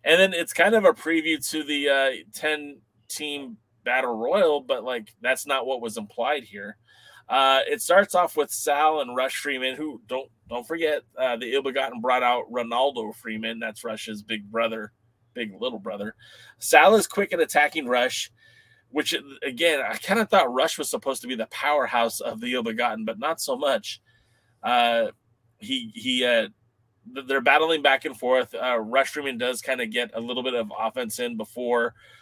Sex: male